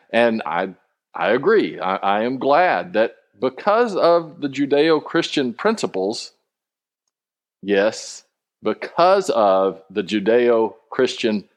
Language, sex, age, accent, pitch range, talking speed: English, male, 50-69, American, 95-120 Hz, 100 wpm